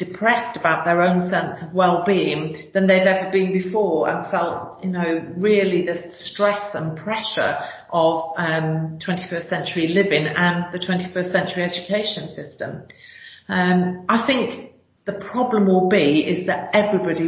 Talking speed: 140 wpm